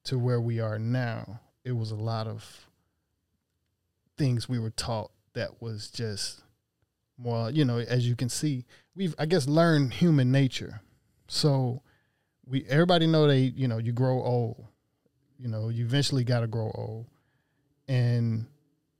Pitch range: 115-135 Hz